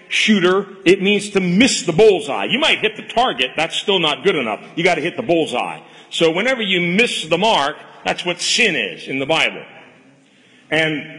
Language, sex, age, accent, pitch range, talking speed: English, male, 50-69, American, 145-200 Hz, 200 wpm